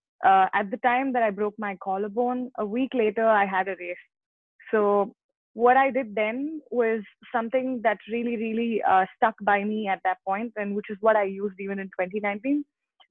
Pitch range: 200-240 Hz